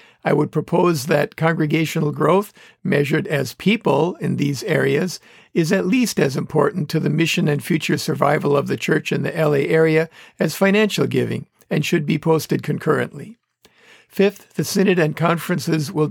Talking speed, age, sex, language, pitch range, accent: 165 wpm, 50-69, male, English, 150-180 Hz, American